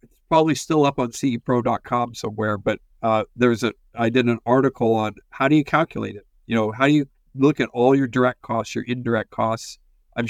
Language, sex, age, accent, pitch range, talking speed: English, male, 50-69, American, 115-135 Hz, 205 wpm